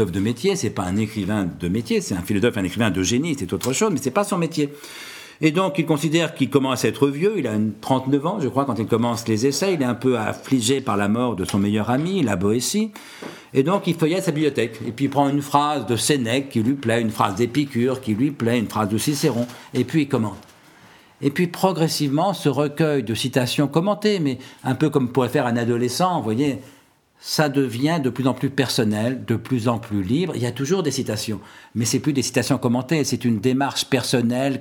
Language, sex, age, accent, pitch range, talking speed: French, male, 50-69, French, 105-140 Hz, 230 wpm